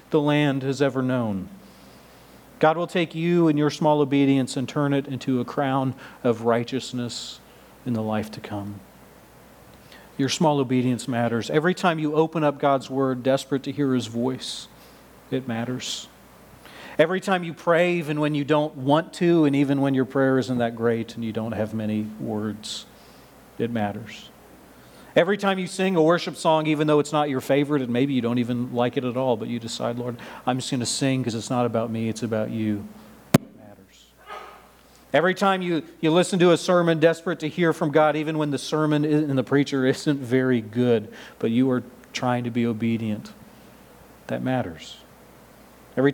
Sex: male